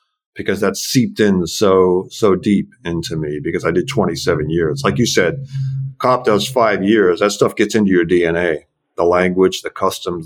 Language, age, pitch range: English, 50-69, 85-135 Hz